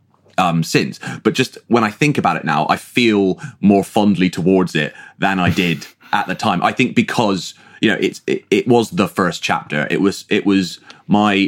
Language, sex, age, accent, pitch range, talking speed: English, male, 30-49, British, 85-110 Hz, 205 wpm